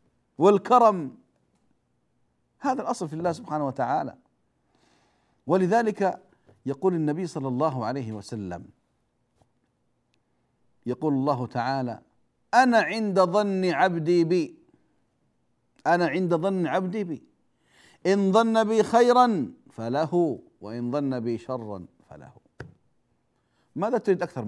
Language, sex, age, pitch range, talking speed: Arabic, male, 50-69, 145-235 Hz, 100 wpm